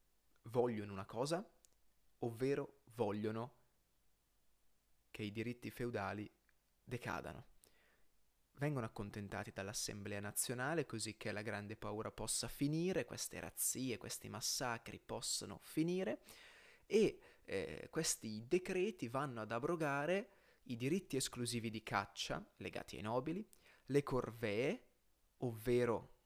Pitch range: 110-140 Hz